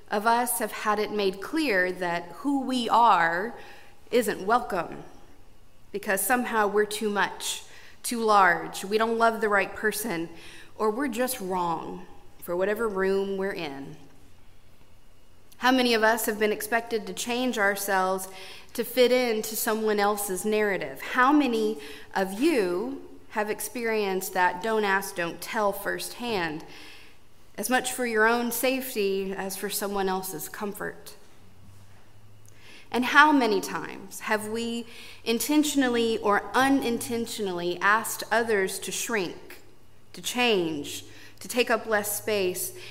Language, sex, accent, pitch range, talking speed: English, female, American, 170-230 Hz, 130 wpm